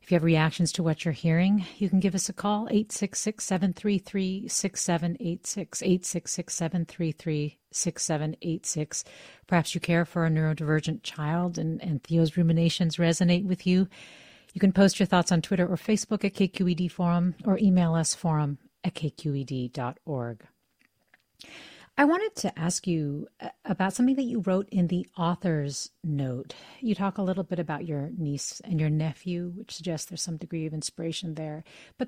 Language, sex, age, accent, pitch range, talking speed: English, female, 40-59, American, 160-195 Hz, 155 wpm